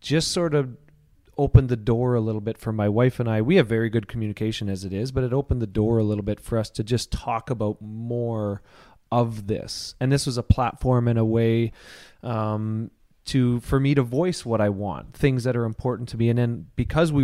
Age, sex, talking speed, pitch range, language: 30-49, male, 230 wpm, 105-125 Hz, English